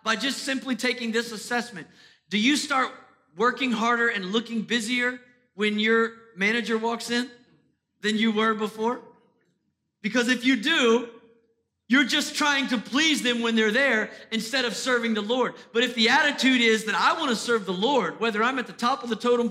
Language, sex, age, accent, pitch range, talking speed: English, male, 40-59, American, 220-255 Hz, 190 wpm